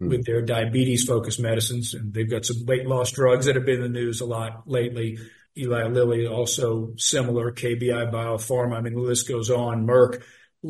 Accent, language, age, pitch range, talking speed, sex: American, English, 50-69, 120-135 Hz, 190 wpm, male